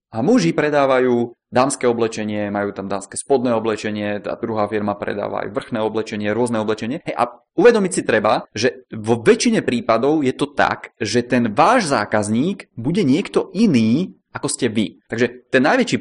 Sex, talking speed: male, 165 wpm